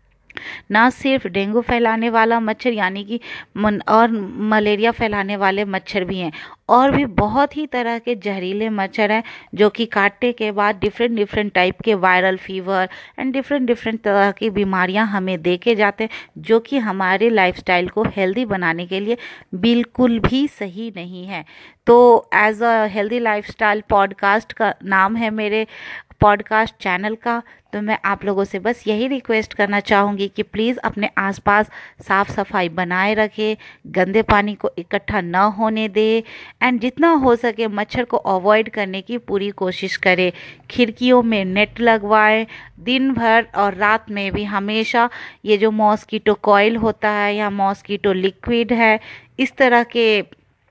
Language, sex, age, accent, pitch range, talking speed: Hindi, female, 30-49, native, 200-230 Hz, 155 wpm